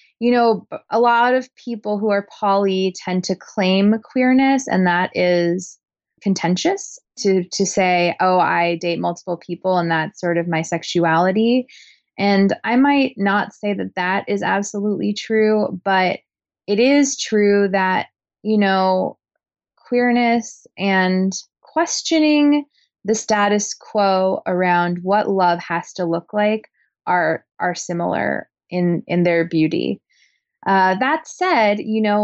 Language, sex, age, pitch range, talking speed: English, female, 20-39, 175-215 Hz, 135 wpm